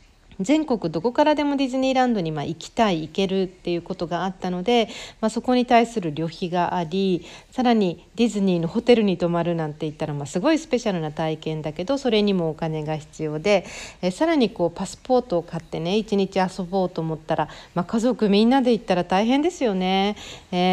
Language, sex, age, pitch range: Japanese, female, 40-59, 165-230 Hz